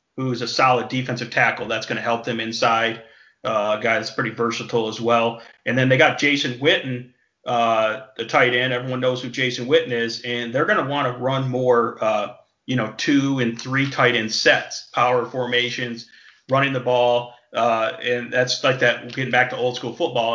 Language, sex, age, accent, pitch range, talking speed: English, male, 40-59, American, 120-135 Hz, 205 wpm